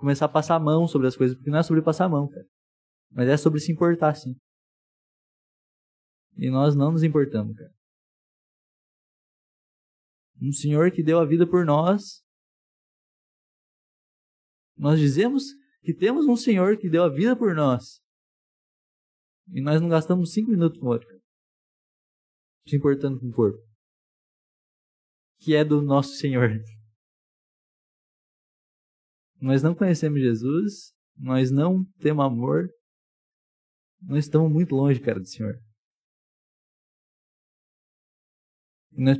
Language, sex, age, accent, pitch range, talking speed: Portuguese, male, 20-39, Brazilian, 125-170 Hz, 130 wpm